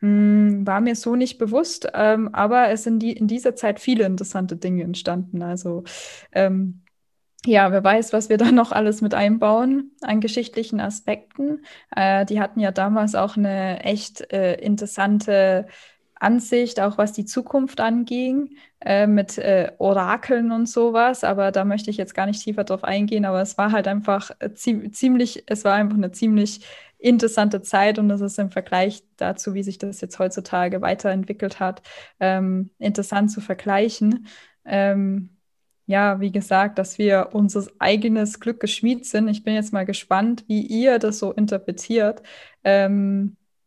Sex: female